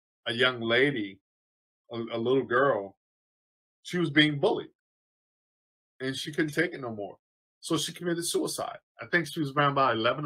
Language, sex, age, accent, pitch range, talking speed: English, male, 20-39, American, 115-155 Hz, 170 wpm